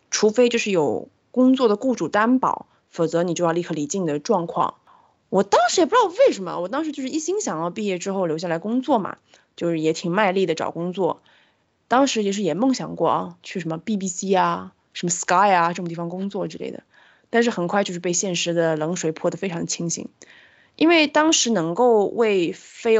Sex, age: female, 20-39